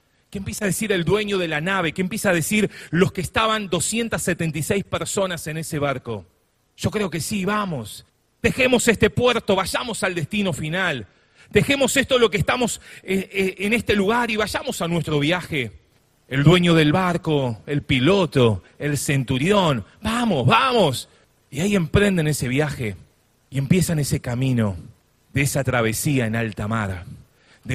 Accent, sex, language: Argentinian, male, Spanish